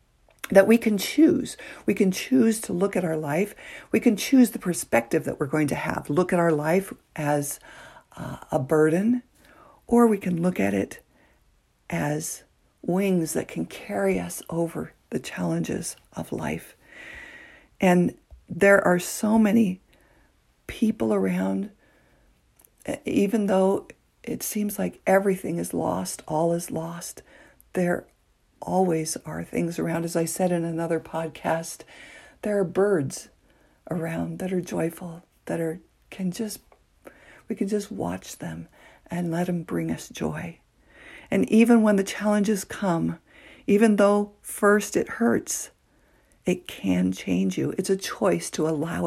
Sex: female